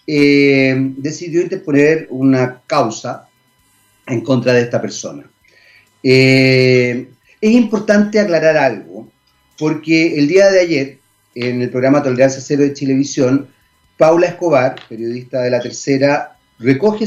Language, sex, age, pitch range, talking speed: Spanish, male, 40-59, 125-165 Hz, 120 wpm